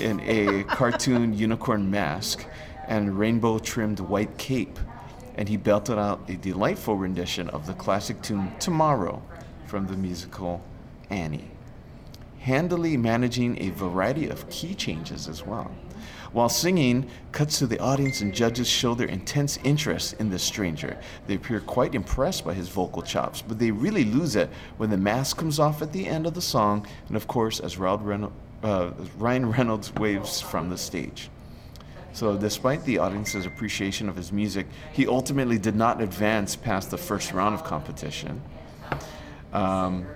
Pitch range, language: 95-125 Hz, English